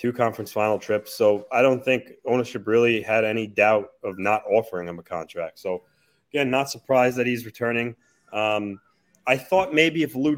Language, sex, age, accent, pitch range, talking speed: English, male, 20-39, American, 105-125 Hz, 190 wpm